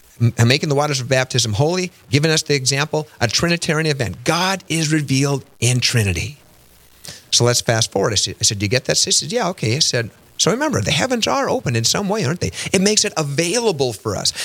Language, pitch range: English, 115-160 Hz